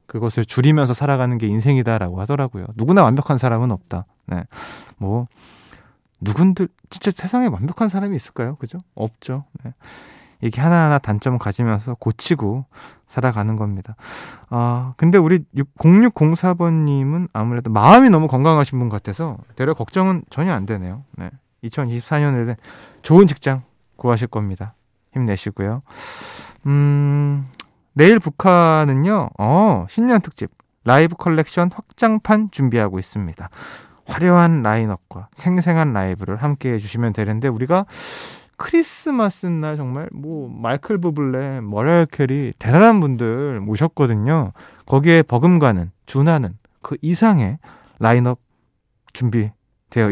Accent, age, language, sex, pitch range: native, 20-39, Korean, male, 110-160 Hz